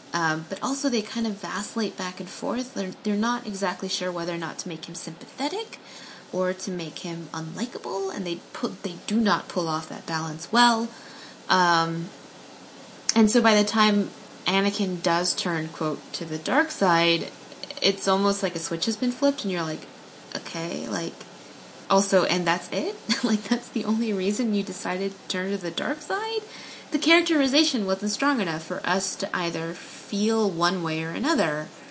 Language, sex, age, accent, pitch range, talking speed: English, female, 20-39, American, 170-230 Hz, 180 wpm